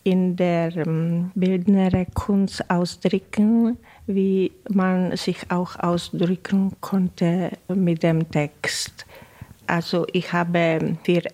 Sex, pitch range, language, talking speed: female, 165-190 Hz, German, 95 wpm